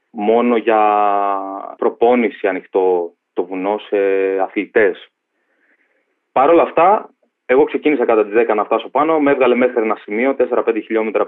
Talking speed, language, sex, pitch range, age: 135 wpm, Greek, male, 110-160 Hz, 20-39